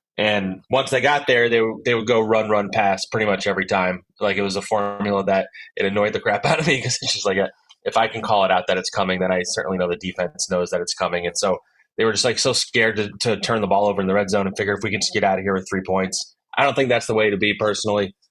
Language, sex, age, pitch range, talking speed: English, male, 20-39, 95-110 Hz, 305 wpm